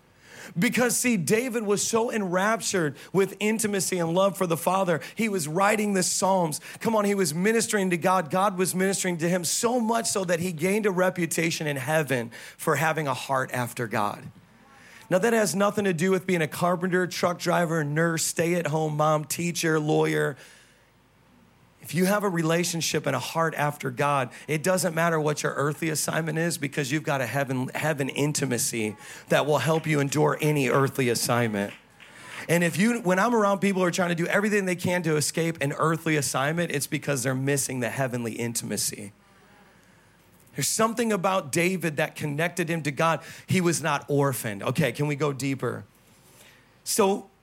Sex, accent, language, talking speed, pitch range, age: male, American, English, 180 wpm, 145-185 Hz, 40-59